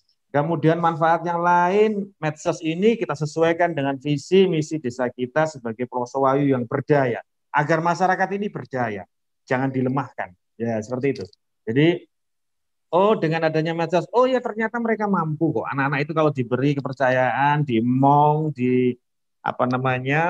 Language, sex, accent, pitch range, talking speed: Indonesian, male, native, 125-165 Hz, 135 wpm